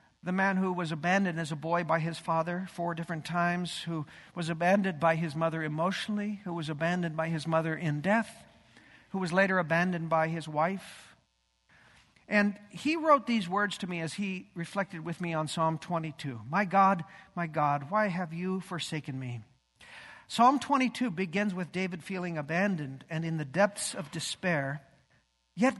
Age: 50-69